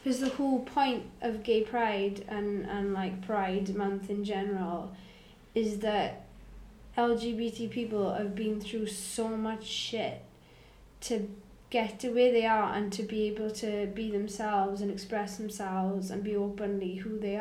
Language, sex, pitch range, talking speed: English, female, 195-225 Hz, 155 wpm